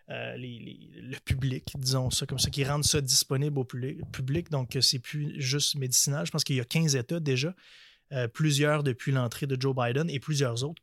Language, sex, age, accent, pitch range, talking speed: French, male, 20-39, Canadian, 130-150 Hz, 210 wpm